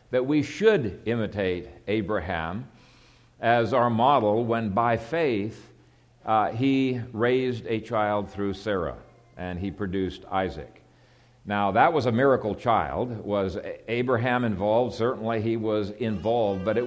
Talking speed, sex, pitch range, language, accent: 130 wpm, male, 105-130 Hz, English, American